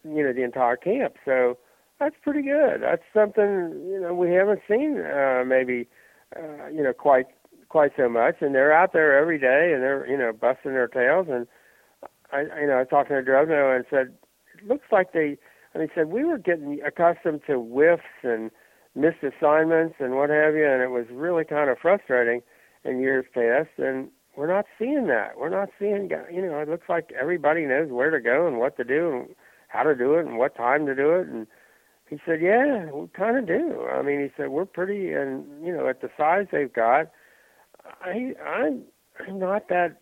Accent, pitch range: American, 125-175 Hz